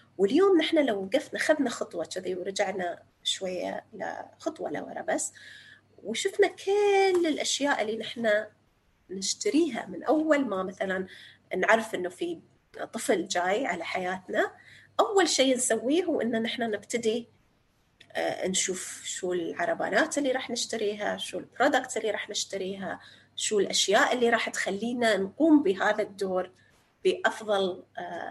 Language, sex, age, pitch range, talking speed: Arabic, female, 30-49, 195-315 Hz, 120 wpm